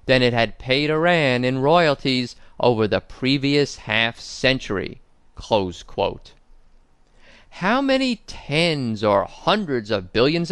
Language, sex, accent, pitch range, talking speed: English, male, American, 120-170 Hz, 120 wpm